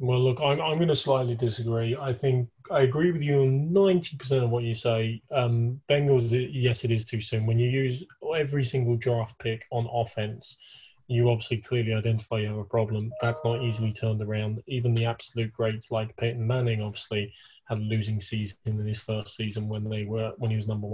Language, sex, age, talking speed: English, male, 20-39, 205 wpm